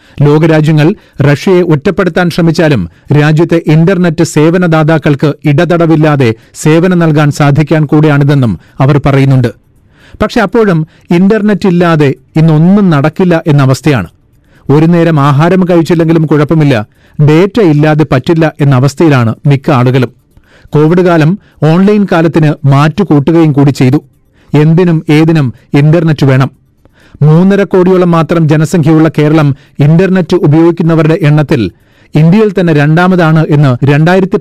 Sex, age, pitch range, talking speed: male, 40-59, 145-170 Hz, 105 wpm